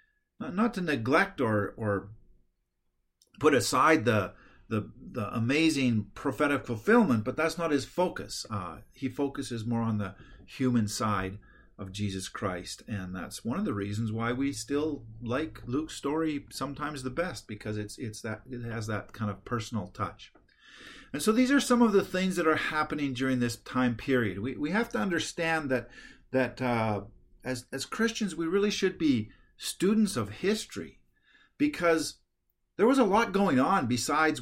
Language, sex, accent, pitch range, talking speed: English, male, American, 115-165 Hz, 165 wpm